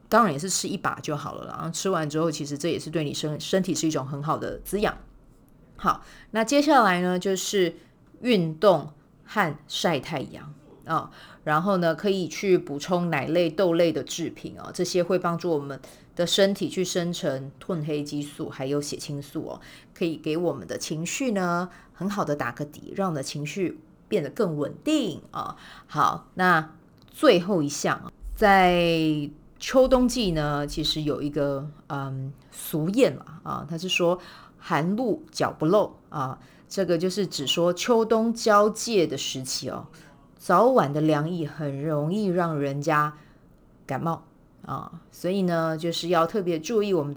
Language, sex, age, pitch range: Chinese, female, 30-49, 150-185 Hz